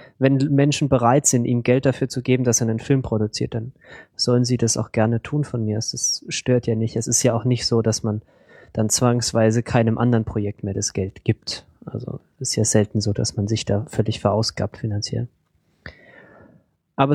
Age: 20-39